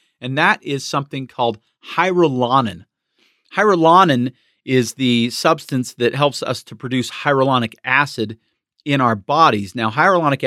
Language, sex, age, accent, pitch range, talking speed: English, male, 40-59, American, 115-145 Hz, 125 wpm